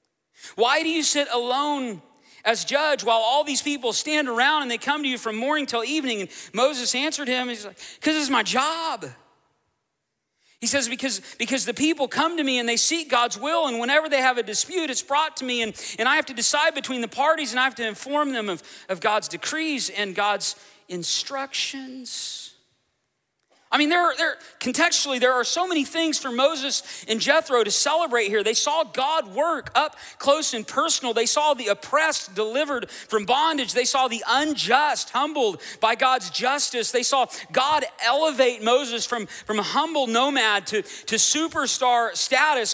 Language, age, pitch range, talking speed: English, 40-59, 230-295 Hz, 185 wpm